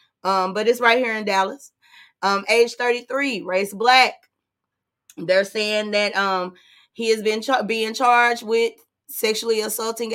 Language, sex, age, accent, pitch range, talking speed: English, female, 20-39, American, 180-235 Hz, 140 wpm